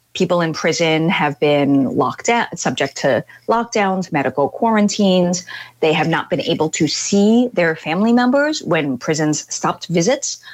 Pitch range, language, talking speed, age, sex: 155-210 Hz, English, 150 wpm, 30-49, female